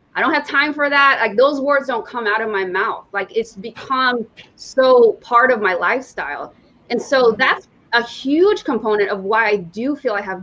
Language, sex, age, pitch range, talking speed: English, female, 20-39, 225-295 Hz, 205 wpm